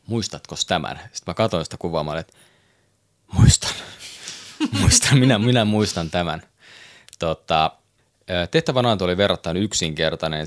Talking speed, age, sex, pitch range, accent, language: 115 wpm, 20-39, male, 80-100 Hz, native, Finnish